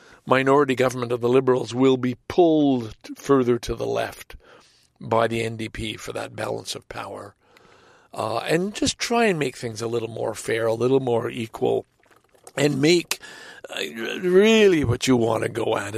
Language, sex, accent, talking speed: English, male, American, 170 wpm